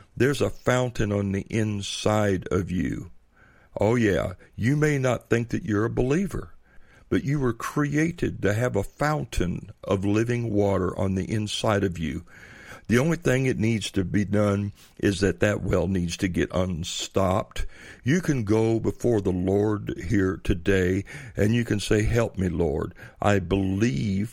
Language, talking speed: English, 165 wpm